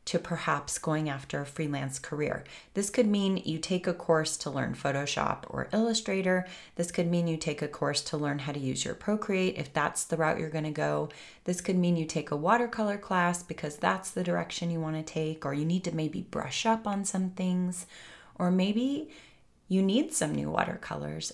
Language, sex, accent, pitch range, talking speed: English, female, American, 150-180 Hz, 200 wpm